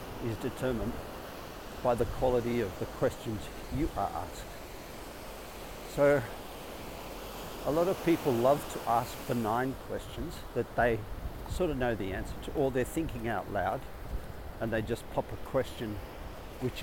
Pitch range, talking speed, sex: 100-125 Hz, 145 wpm, male